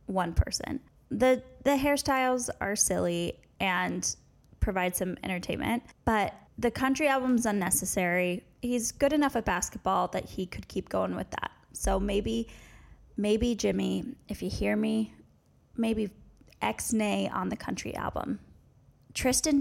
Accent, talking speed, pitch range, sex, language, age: American, 135 wpm, 180-235 Hz, female, English, 20-39